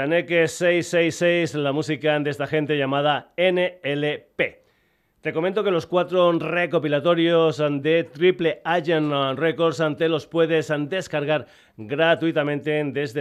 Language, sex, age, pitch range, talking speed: Spanish, male, 40-59, 140-165 Hz, 115 wpm